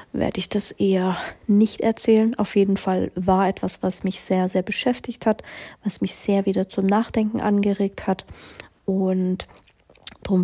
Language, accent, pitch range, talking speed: German, German, 195-225 Hz, 155 wpm